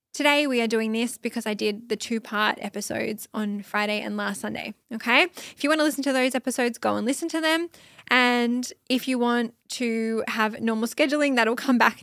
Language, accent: English, Australian